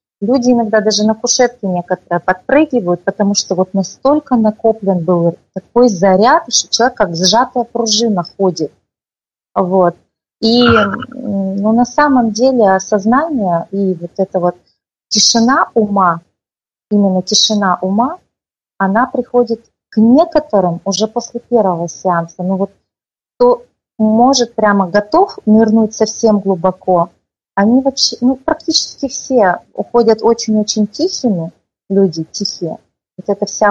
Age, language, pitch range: 30-49, Russian, 190-235 Hz